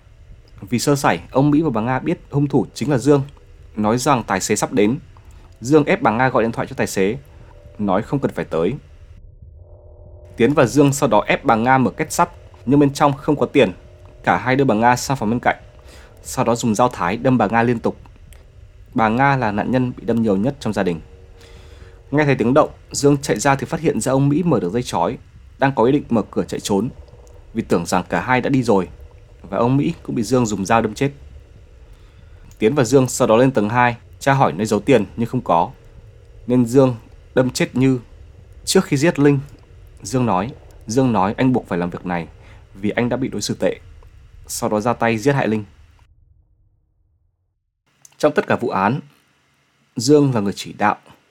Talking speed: 215 wpm